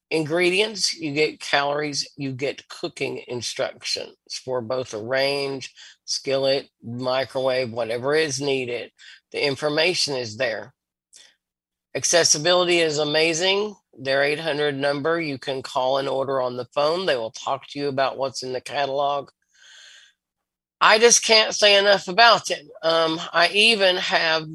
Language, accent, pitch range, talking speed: English, American, 135-170 Hz, 135 wpm